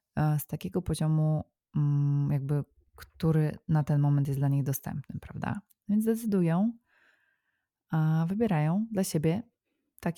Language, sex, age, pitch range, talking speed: Polish, female, 20-39, 150-175 Hz, 110 wpm